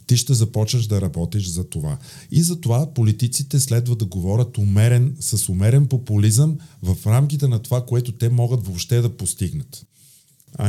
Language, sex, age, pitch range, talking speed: Bulgarian, male, 50-69, 115-150 Hz, 165 wpm